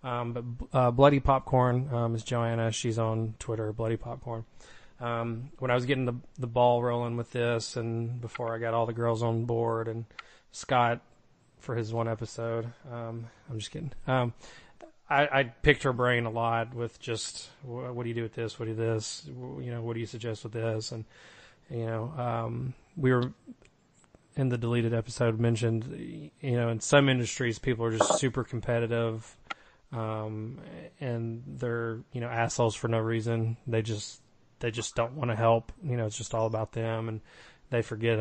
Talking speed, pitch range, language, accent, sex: 190 wpm, 115-125 Hz, English, American, male